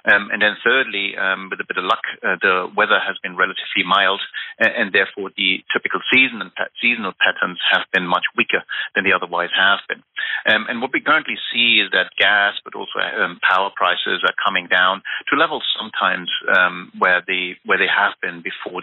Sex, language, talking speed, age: male, English, 205 wpm, 40-59